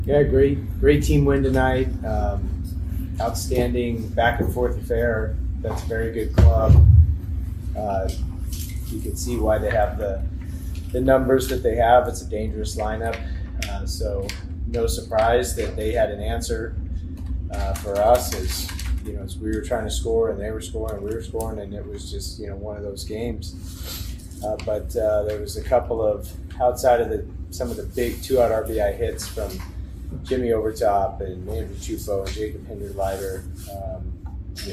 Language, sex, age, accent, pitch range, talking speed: English, male, 30-49, American, 85-110 Hz, 180 wpm